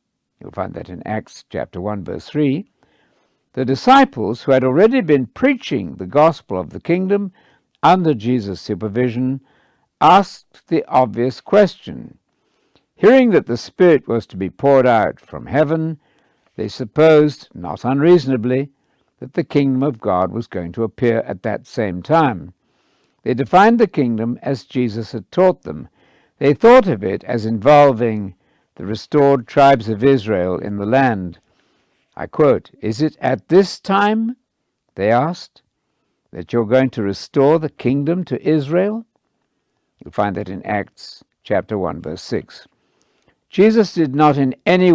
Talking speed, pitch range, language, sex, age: 150 wpm, 115-160 Hz, English, male, 60-79